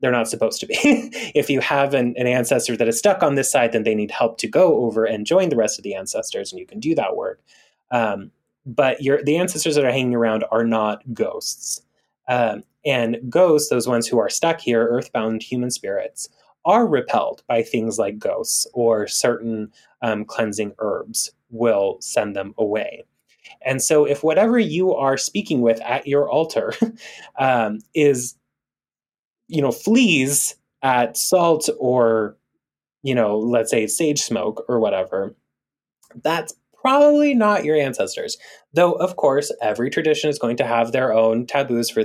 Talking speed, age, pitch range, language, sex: 170 wpm, 20-39, 115-160 Hz, English, male